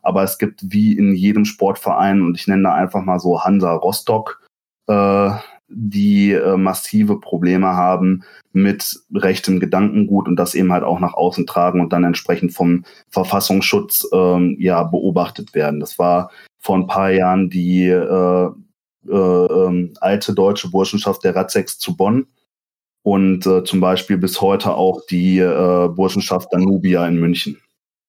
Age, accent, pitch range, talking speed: 20-39, German, 90-100 Hz, 155 wpm